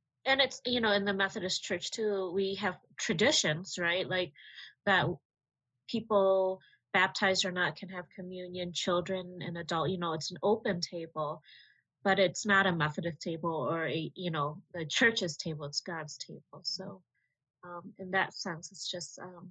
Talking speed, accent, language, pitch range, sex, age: 165 wpm, American, English, 160-190 Hz, female, 30-49